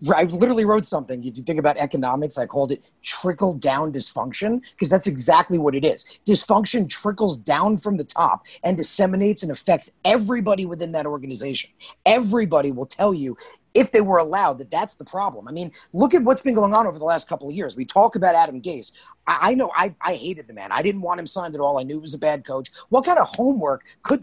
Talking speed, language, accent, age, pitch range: 230 wpm, English, American, 30-49, 150-210 Hz